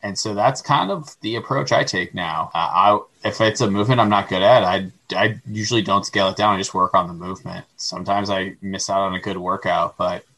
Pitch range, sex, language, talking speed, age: 100-120 Hz, male, English, 245 wpm, 20-39